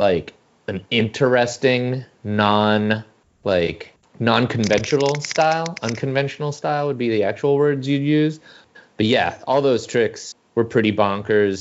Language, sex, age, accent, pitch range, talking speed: English, male, 30-49, American, 100-120 Hz, 130 wpm